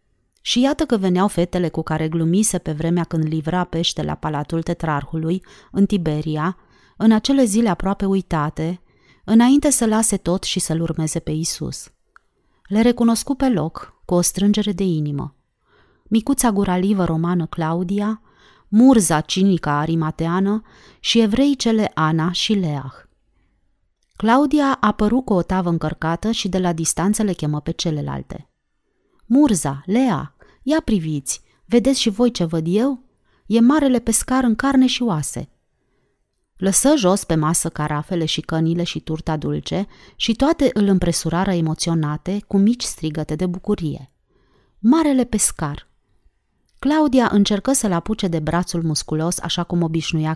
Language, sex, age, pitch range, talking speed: Romanian, female, 30-49, 160-220 Hz, 140 wpm